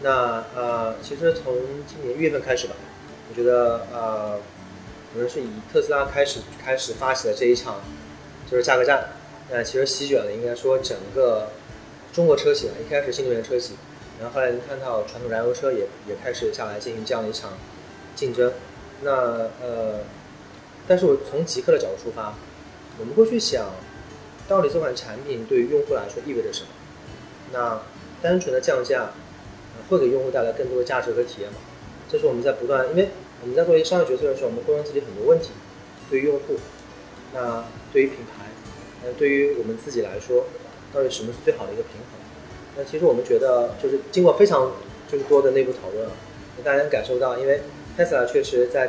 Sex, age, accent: male, 30-49, native